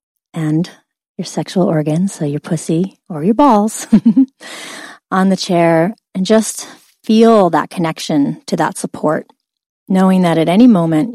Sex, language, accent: female, English, American